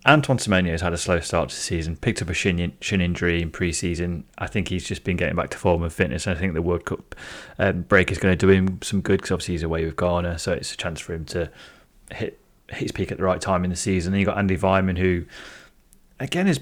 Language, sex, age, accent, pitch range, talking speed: English, male, 30-49, British, 90-105 Hz, 265 wpm